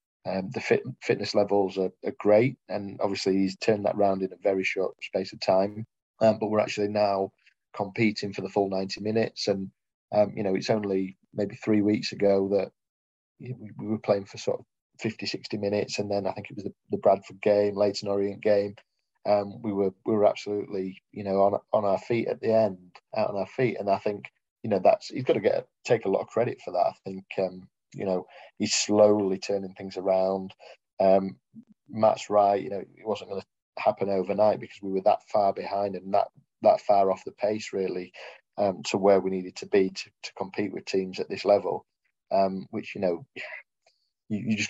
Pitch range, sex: 95-105 Hz, male